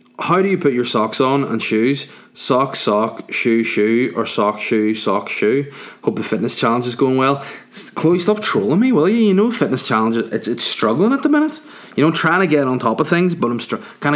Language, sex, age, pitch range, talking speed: English, male, 20-39, 110-145 Hz, 230 wpm